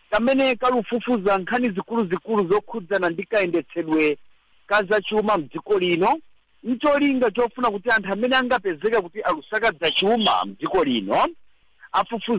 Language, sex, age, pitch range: English, male, 50-69, 175-245 Hz